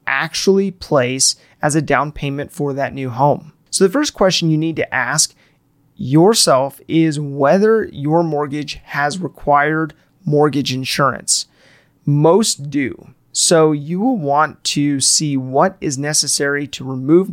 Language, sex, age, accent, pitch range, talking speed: English, male, 30-49, American, 140-165 Hz, 140 wpm